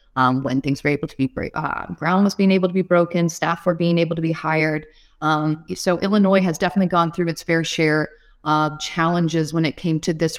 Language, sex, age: English, female, 30-49